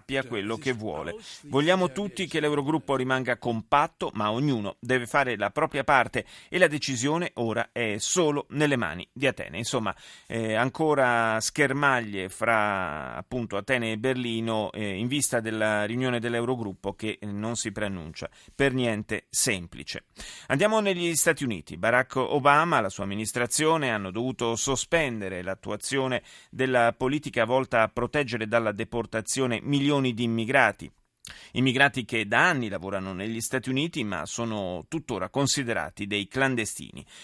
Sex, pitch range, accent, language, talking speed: male, 105-140 Hz, native, Italian, 140 wpm